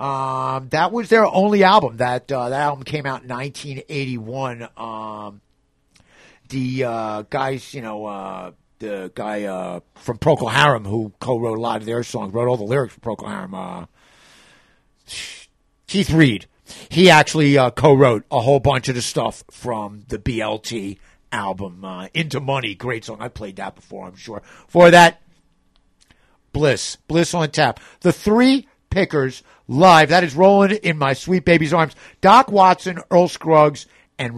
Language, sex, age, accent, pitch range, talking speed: English, male, 50-69, American, 120-175 Hz, 160 wpm